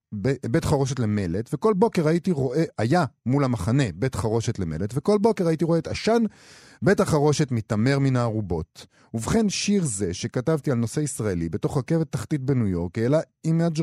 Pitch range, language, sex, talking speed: 105-155 Hz, Hebrew, male, 170 wpm